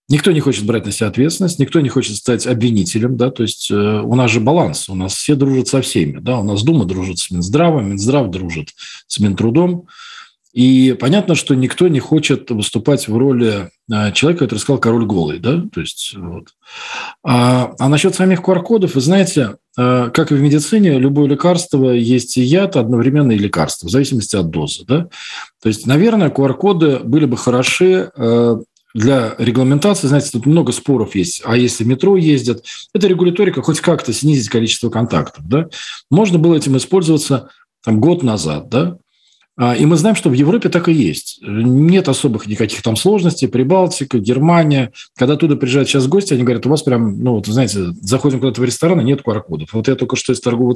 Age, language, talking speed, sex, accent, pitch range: 40-59, Russian, 175 wpm, male, native, 115-160 Hz